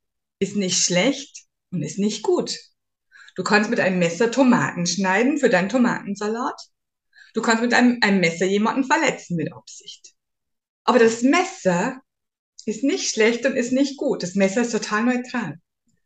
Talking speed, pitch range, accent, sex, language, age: 155 wpm, 185-255 Hz, German, female, German, 50-69